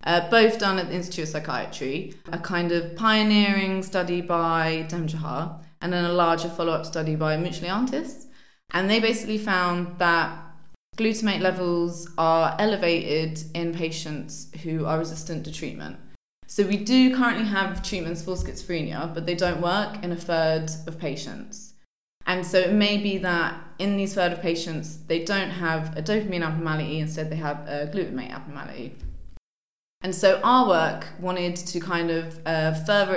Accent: British